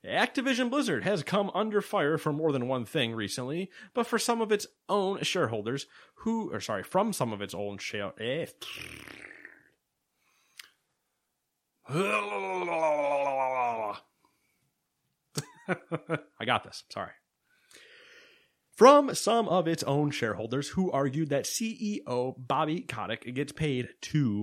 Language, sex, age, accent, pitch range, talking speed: English, male, 30-49, American, 125-185 Hz, 115 wpm